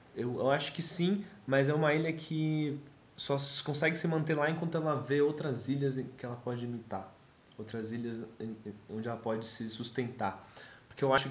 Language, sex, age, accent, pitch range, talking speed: Portuguese, male, 20-39, Brazilian, 110-140 Hz, 180 wpm